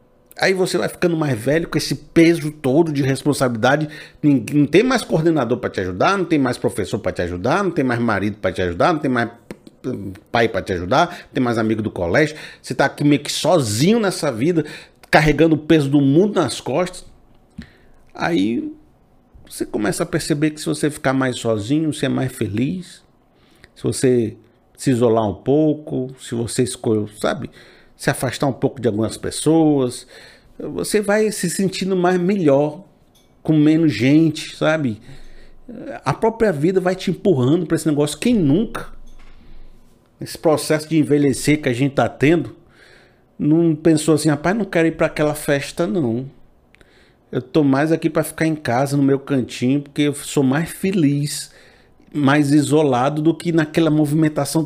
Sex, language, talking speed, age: male, Portuguese, 170 wpm, 50-69